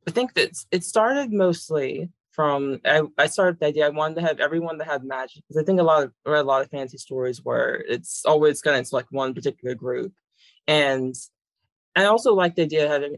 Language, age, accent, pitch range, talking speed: English, 20-39, American, 130-160 Hz, 225 wpm